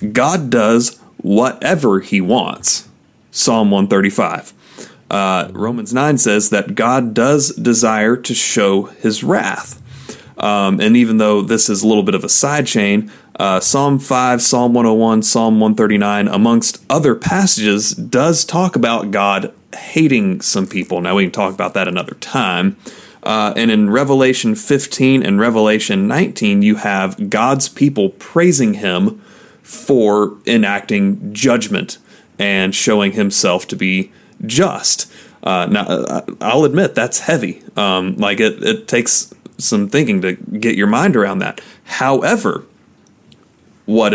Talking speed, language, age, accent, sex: 135 wpm, English, 30-49, American, male